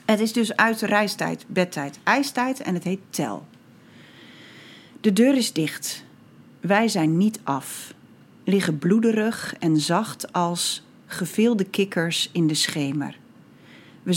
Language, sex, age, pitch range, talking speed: Dutch, female, 40-59, 160-200 Hz, 130 wpm